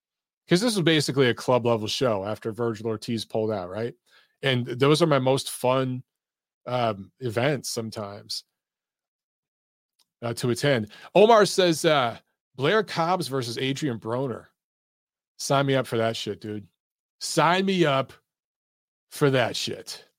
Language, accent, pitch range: English, American, 120-160 Hz